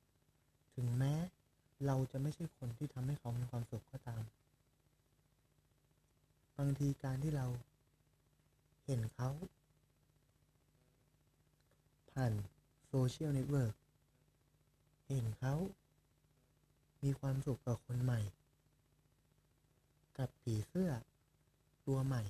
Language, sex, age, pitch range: Thai, male, 20-39, 125-145 Hz